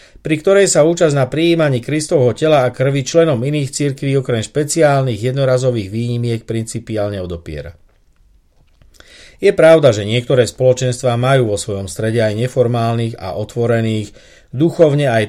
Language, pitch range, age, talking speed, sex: Slovak, 110-135 Hz, 50-69, 135 wpm, male